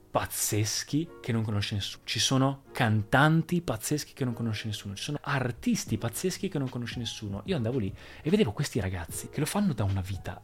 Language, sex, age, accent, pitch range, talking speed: Italian, male, 30-49, native, 110-150 Hz, 195 wpm